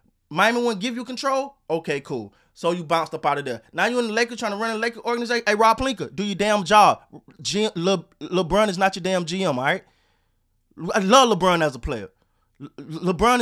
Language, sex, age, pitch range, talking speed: English, male, 20-39, 160-245 Hz, 230 wpm